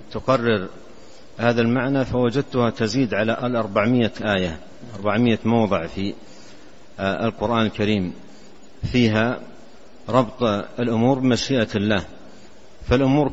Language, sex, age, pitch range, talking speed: Arabic, male, 50-69, 105-125 Hz, 85 wpm